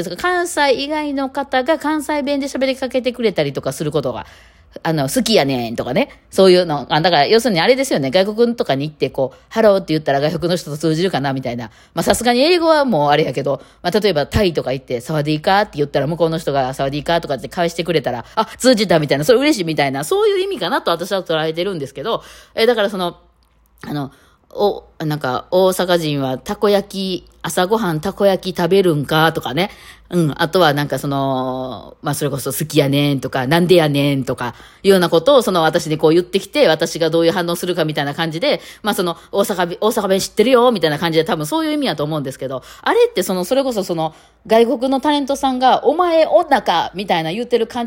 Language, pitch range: Japanese, 150-230 Hz